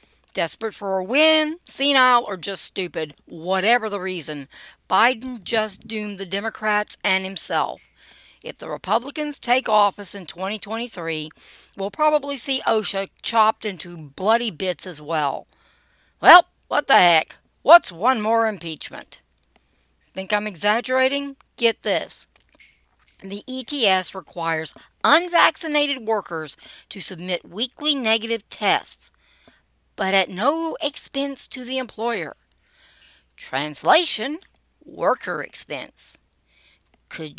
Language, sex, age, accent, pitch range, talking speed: English, female, 60-79, American, 190-280 Hz, 110 wpm